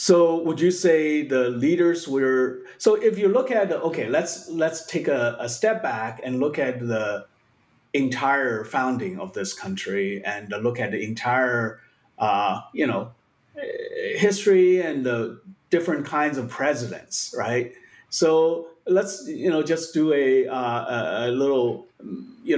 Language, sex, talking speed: English, male, 150 wpm